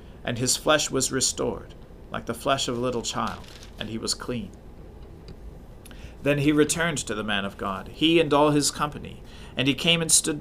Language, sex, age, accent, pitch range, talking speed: English, male, 40-59, American, 115-145 Hz, 195 wpm